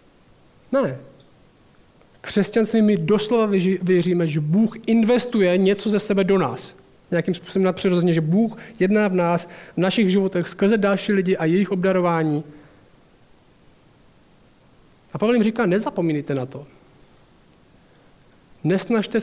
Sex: male